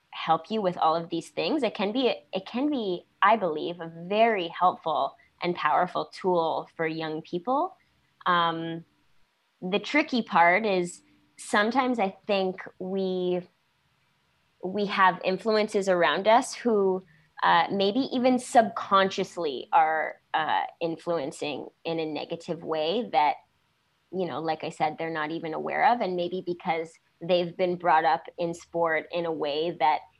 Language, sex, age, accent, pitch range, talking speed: English, female, 20-39, American, 165-195 Hz, 145 wpm